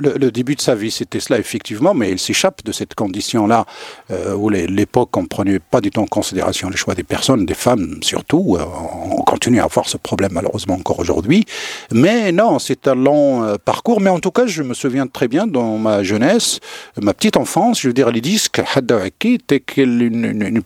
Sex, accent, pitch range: male, French, 105-140 Hz